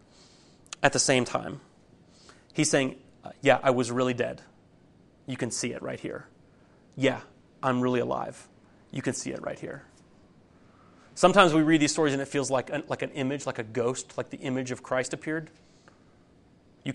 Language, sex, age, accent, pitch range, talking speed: English, male, 30-49, American, 125-150 Hz, 175 wpm